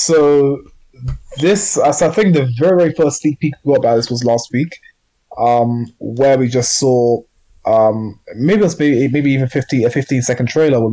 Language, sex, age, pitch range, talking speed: English, male, 20-39, 115-135 Hz, 175 wpm